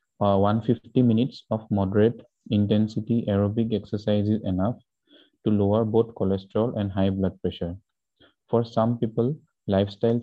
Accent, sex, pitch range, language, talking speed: Indian, male, 100-115 Hz, English, 125 wpm